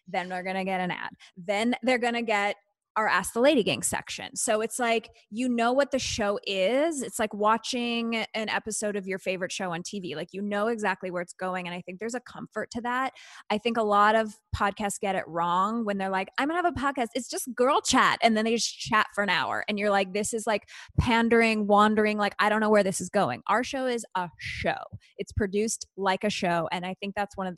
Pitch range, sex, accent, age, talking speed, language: 195-230 Hz, female, American, 20-39, 245 wpm, English